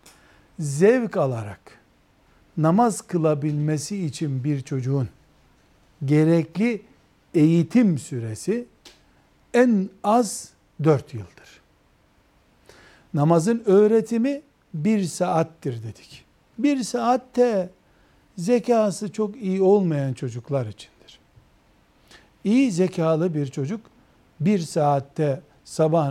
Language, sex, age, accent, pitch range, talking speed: Turkish, male, 60-79, native, 135-205 Hz, 80 wpm